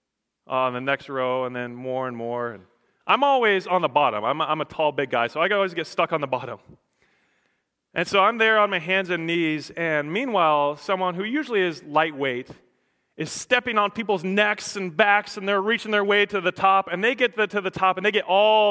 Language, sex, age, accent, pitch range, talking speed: English, male, 30-49, American, 155-210 Hz, 220 wpm